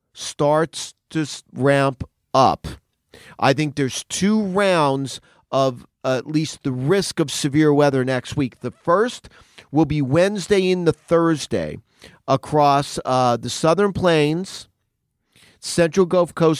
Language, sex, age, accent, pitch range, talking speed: English, male, 40-59, American, 130-170 Hz, 125 wpm